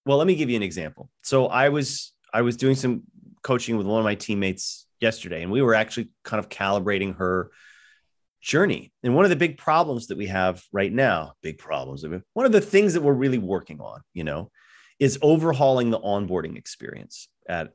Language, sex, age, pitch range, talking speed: English, male, 30-49, 100-135 Hz, 205 wpm